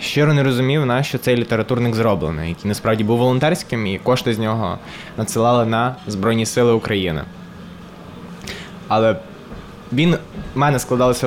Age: 20-39